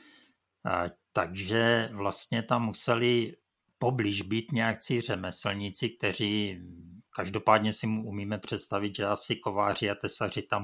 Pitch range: 95-120 Hz